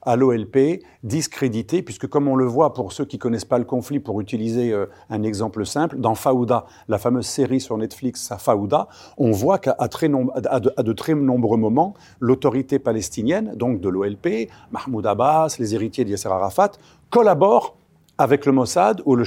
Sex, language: male, French